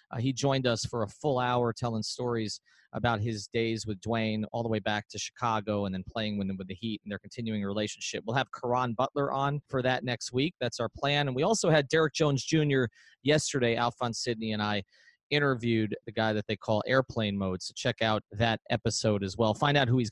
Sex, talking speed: male, 225 wpm